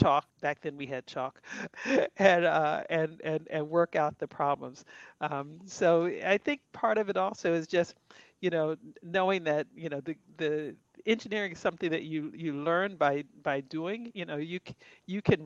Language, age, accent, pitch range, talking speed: English, 50-69, American, 145-170 Hz, 185 wpm